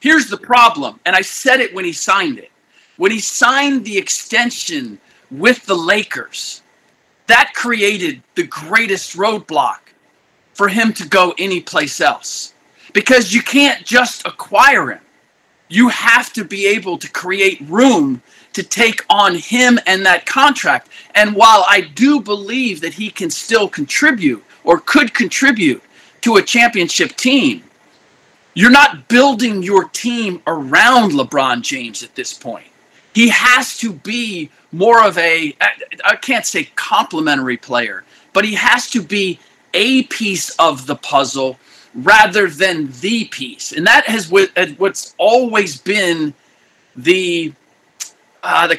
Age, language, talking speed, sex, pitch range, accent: 40-59, English, 140 wpm, male, 185-250 Hz, American